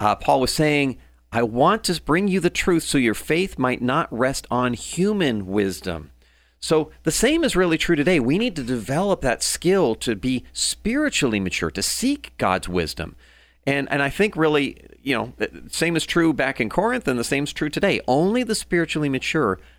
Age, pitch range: 40-59, 110-165 Hz